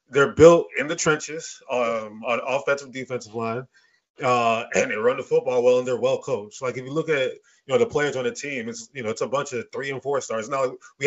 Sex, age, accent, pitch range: male, 20-39, American, 125-175 Hz